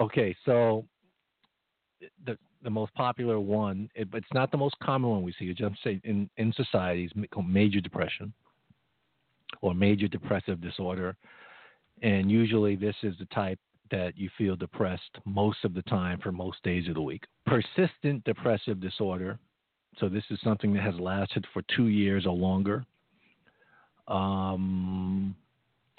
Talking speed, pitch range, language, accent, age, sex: 150 wpm, 95-115 Hz, English, American, 50-69, male